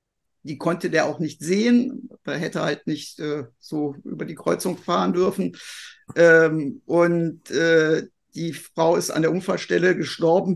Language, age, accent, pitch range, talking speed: German, 50-69, German, 160-200 Hz, 155 wpm